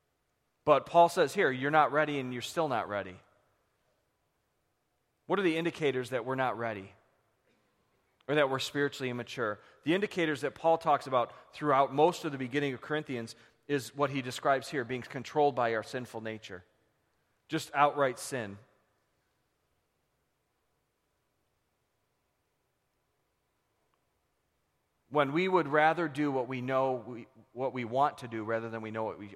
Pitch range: 110-145 Hz